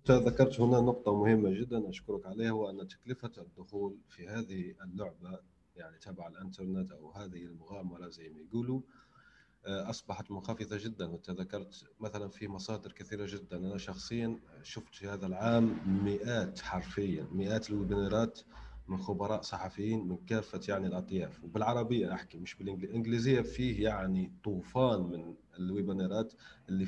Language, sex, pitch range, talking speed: Arabic, male, 100-130 Hz, 130 wpm